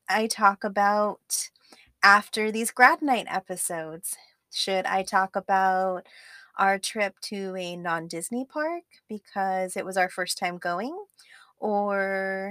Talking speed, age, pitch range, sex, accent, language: 125 wpm, 20-39, 185-220 Hz, female, American, English